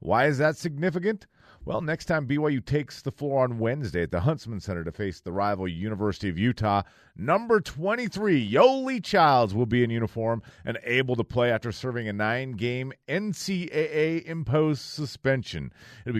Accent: American